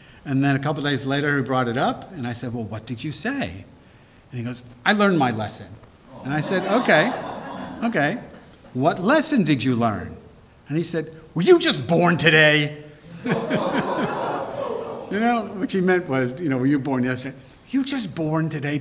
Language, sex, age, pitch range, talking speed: English, male, 50-69, 120-175 Hz, 190 wpm